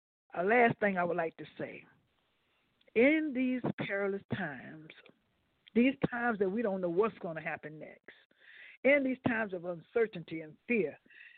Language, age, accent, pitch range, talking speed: English, 60-79, American, 185-245 Hz, 160 wpm